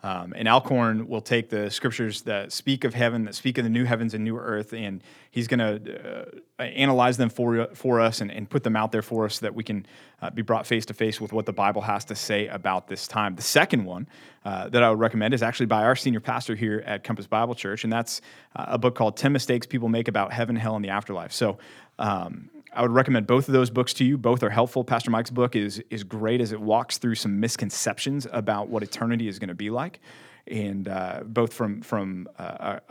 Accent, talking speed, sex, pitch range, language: American, 240 wpm, male, 105-120 Hz, English